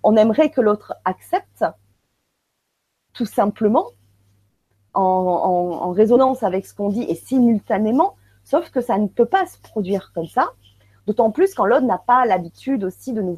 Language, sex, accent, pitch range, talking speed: French, female, French, 195-260 Hz, 160 wpm